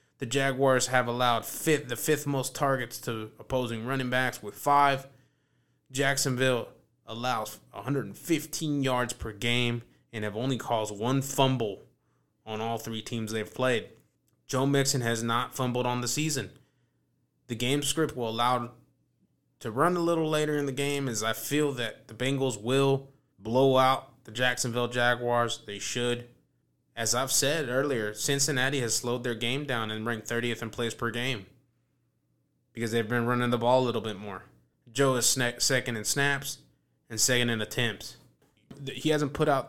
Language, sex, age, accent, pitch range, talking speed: English, male, 20-39, American, 110-135 Hz, 160 wpm